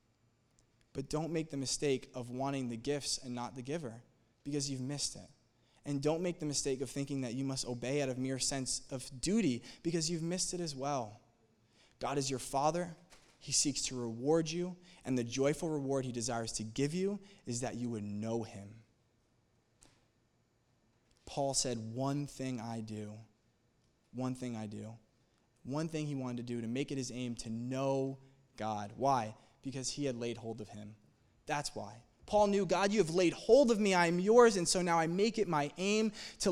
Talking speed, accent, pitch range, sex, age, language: 195 wpm, American, 120-170 Hz, male, 20-39, English